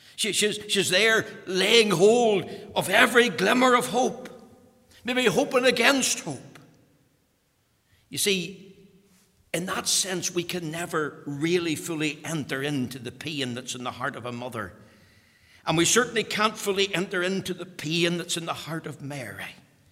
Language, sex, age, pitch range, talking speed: English, male, 60-79, 125-185 Hz, 155 wpm